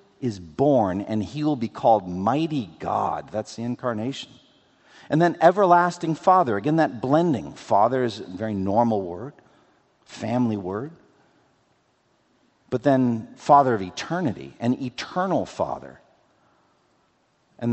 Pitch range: 105-145 Hz